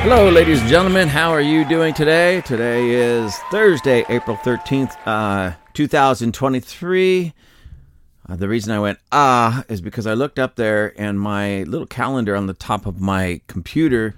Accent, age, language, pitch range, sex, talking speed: American, 40-59, English, 95-125 Hz, male, 160 wpm